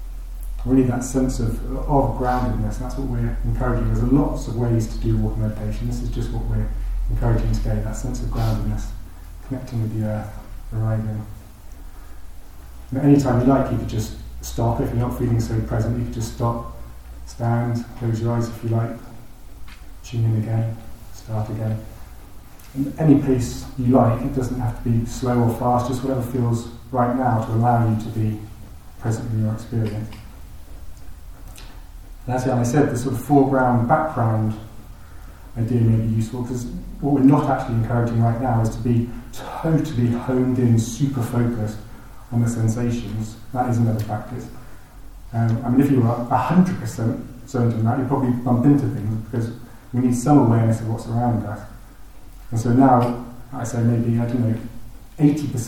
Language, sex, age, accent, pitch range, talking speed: English, male, 30-49, British, 110-125 Hz, 170 wpm